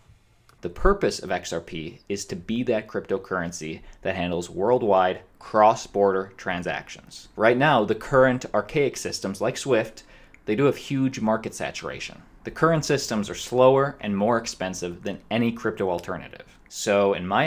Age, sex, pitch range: 20-39, male, 100-120 Hz